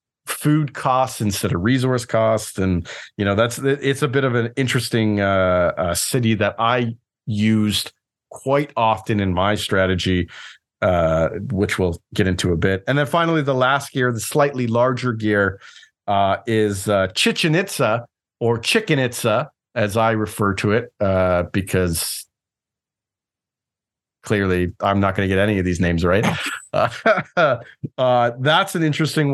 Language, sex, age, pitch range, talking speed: English, male, 40-59, 100-135 Hz, 155 wpm